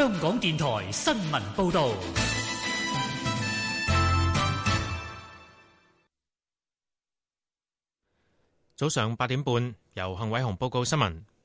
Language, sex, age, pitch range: Chinese, male, 30-49, 110-145 Hz